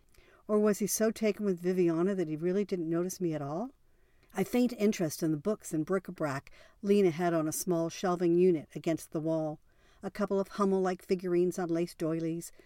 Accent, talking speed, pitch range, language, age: American, 195 wpm, 160-205 Hz, English, 50-69